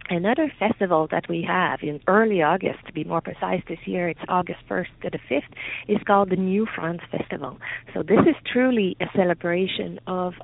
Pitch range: 160-195 Hz